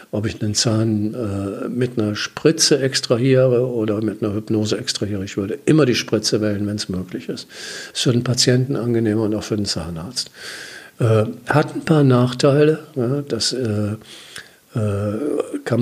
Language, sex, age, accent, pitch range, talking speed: German, male, 50-69, German, 105-125 Hz, 165 wpm